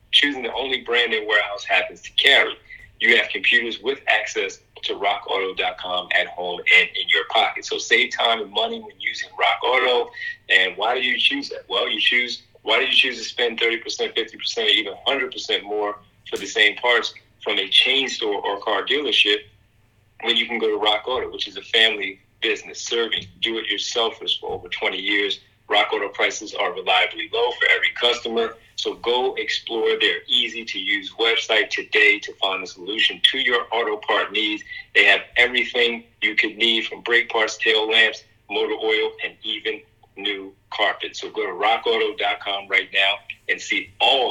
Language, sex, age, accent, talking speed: English, male, 30-49, American, 180 wpm